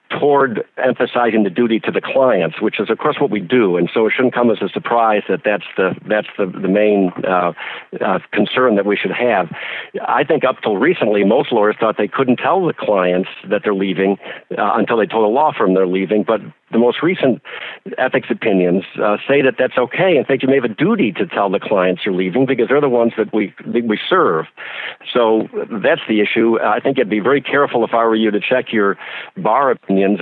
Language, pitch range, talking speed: English, 95-120 Hz, 225 wpm